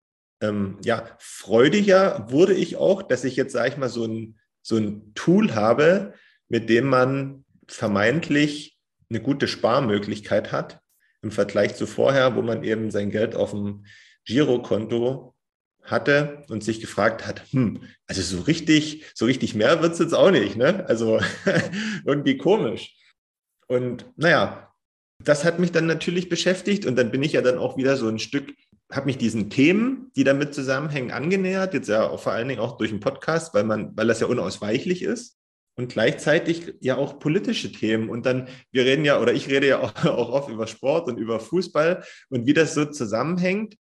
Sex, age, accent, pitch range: male, 30-49, German, 115-170 Hz